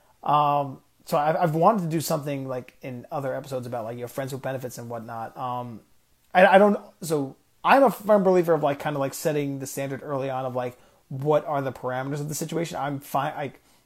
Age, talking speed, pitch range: 30-49, 220 wpm, 130-165 Hz